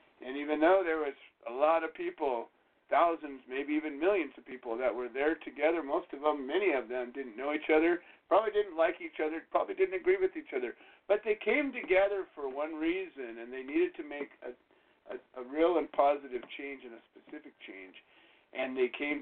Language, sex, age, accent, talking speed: English, male, 50-69, American, 205 wpm